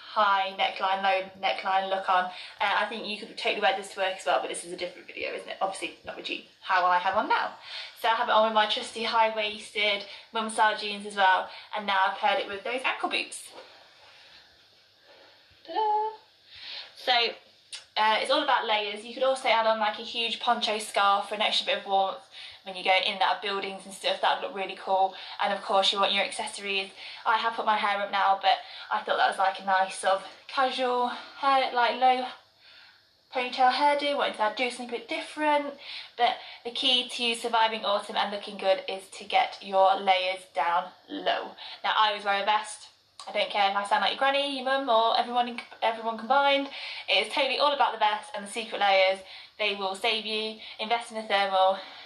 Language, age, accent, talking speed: English, 20-39, British, 215 wpm